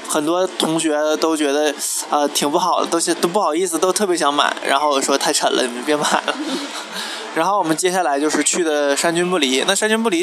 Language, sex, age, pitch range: Chinese, male, 20-39, 145-180 Hz